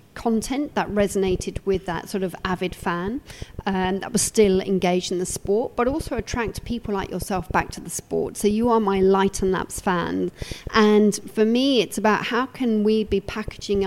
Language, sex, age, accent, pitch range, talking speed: English, female, 40-59, British, 185-215 Hz, 195 wpm